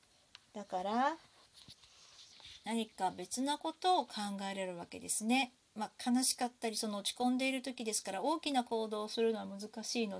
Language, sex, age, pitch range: Japanese, female, 40-59, 205-265 Hz